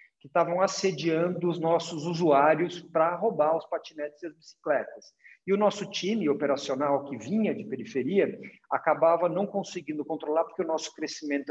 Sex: male